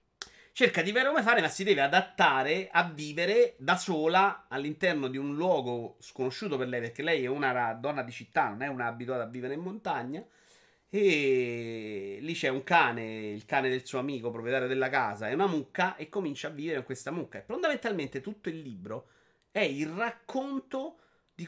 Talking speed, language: 185 wpm, Italian